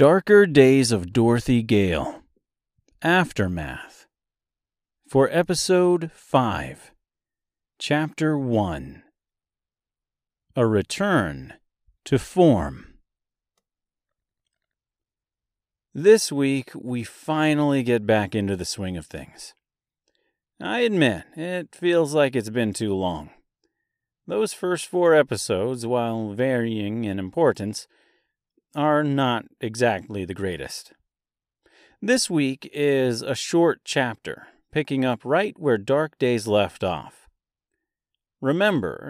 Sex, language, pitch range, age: male, English, 110-160 Hz, 40-59